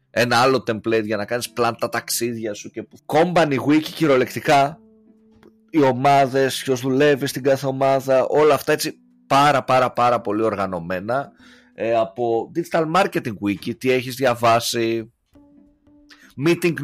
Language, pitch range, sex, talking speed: Greek, 110-145 Hz, male, 130 wpm